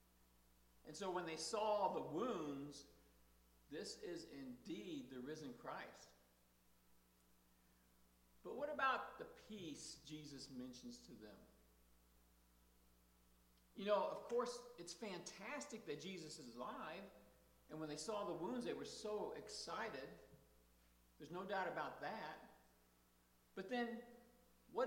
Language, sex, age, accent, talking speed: English, male, 50-69, American, 120 wpm